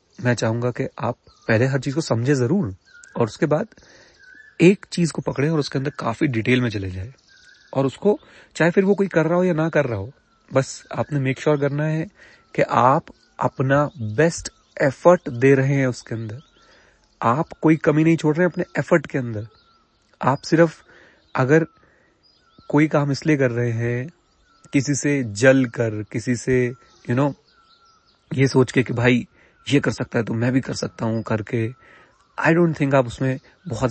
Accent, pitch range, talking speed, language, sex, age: native, 120-155 Hz, 190 wpm, Hindi, male, 30-49